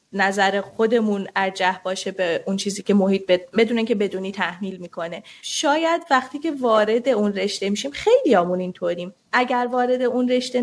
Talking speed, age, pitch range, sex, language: 165 wpm, 30-49, 200-250 Hz, female, Persian